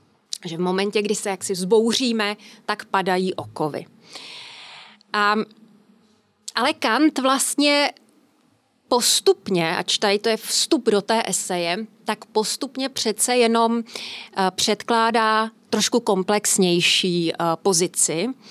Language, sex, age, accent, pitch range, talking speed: Czech, female, 30-49, native, 200-235 Hz, 100 wpm